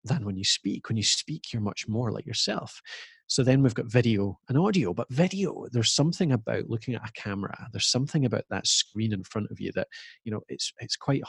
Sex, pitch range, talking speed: male, 110-145 Hz, 230 wpm